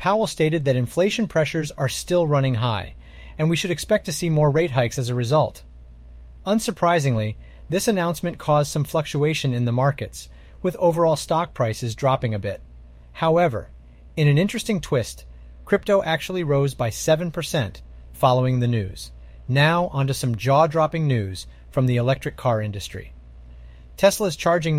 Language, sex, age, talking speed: English, male, 30-49, 150 wpm